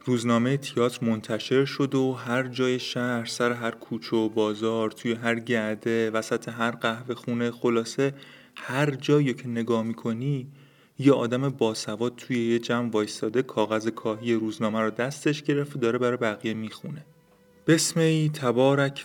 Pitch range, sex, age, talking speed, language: 110-130 Hz, male, 30-49, 140 wpm, Persian